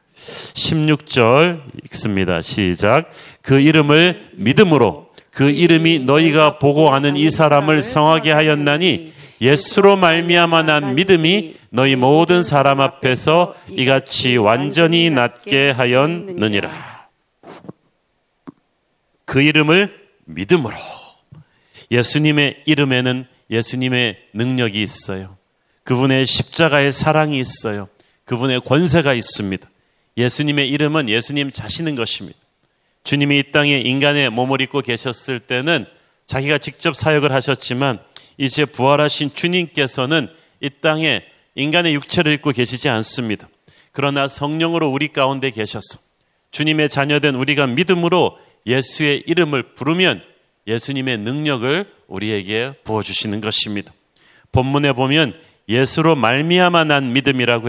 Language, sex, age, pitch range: Korean, male, 40-59, 125-155 Hz